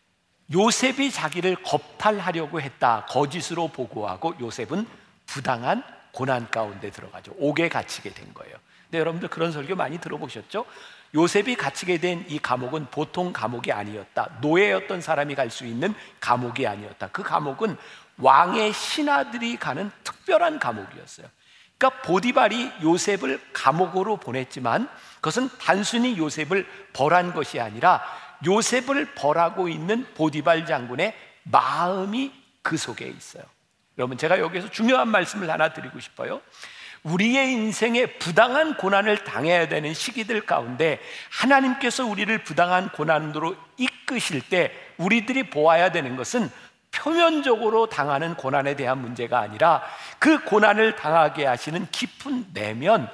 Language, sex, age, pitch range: Korean, male, 50-69, 145-225 Hz